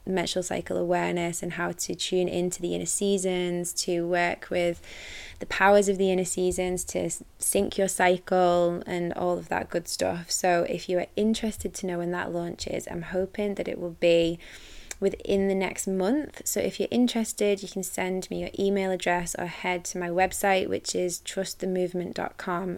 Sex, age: female, 20-39